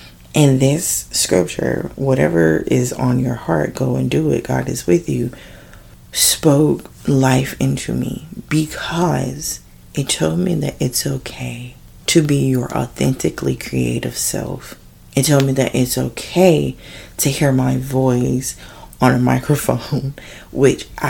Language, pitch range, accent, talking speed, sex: English, 110-140 Hz, American, 135 wpm, female